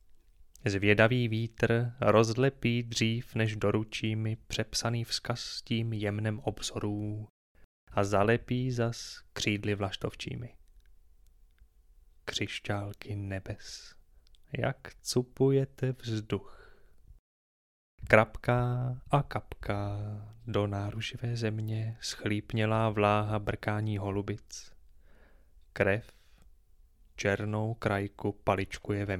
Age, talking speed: 20-39, 80 wpm